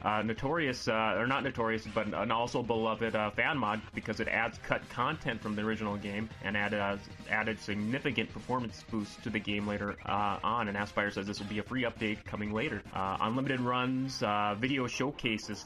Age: 30-49